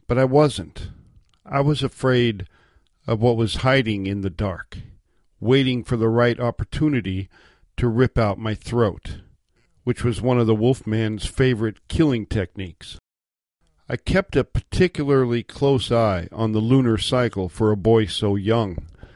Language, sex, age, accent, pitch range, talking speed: English, male, 50-69, American, 105-130 Hz, 145 wpm